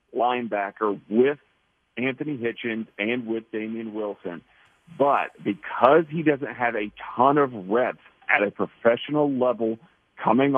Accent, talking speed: American, 125 wpm